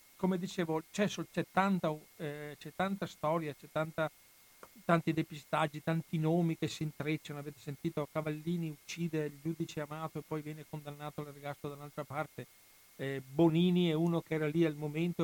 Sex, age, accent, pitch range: male, 50-69, native, 140-160 Hz